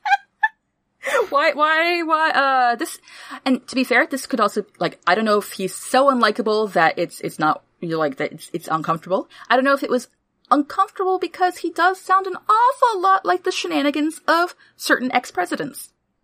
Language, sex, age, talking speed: English, female, 30-49, 190 wpm